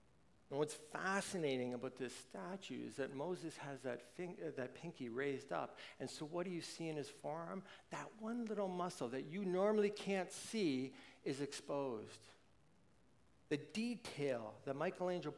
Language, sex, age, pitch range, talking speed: English, male, 60-79, 140-185 Hz, 155 wpm